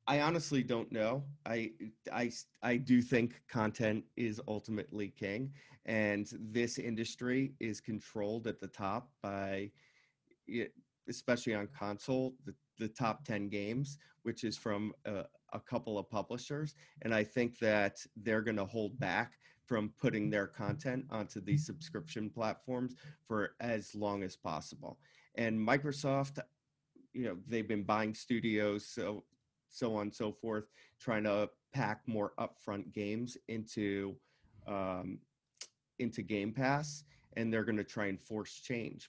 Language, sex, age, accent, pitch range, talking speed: English, male, 30-49, American, 105-130 Hz, 145 wpm